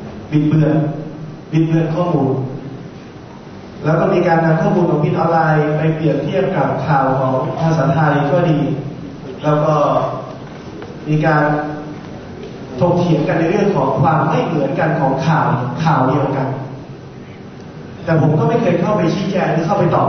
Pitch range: 145-175 Hz